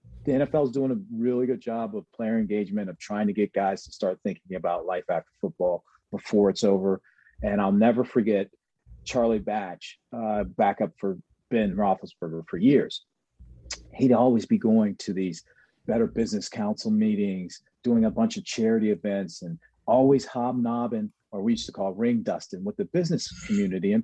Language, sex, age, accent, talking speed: English, male, 40-59, American, 175 wpm